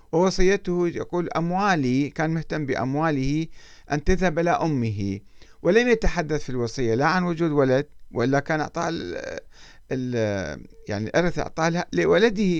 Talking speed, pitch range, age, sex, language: 120 wpm, 115-170 Hz, 50-69, male, Arabic